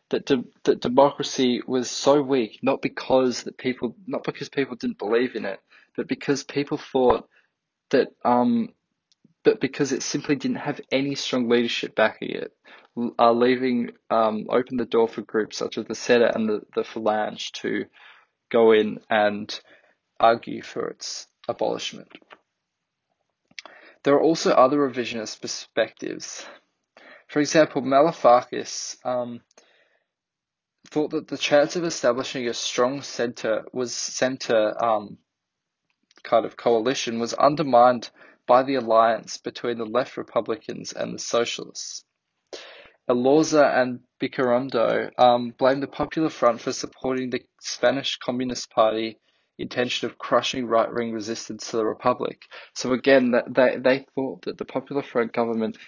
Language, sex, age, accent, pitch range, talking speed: English, male, 20-39, Australian, 115-140 Hz, 140 wpm